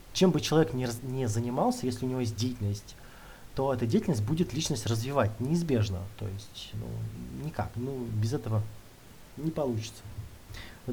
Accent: native